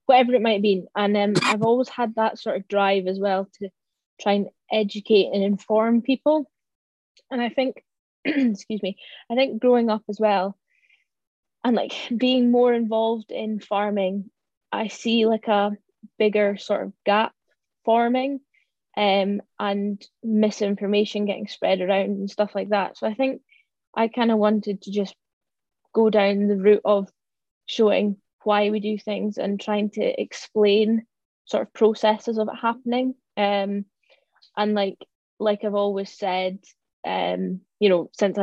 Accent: British